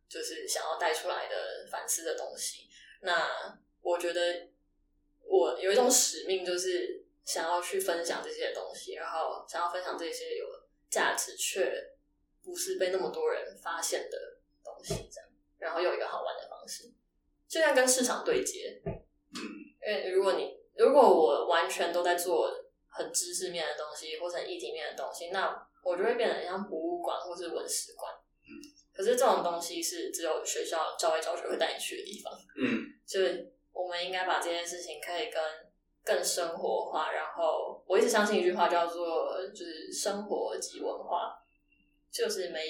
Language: Chinese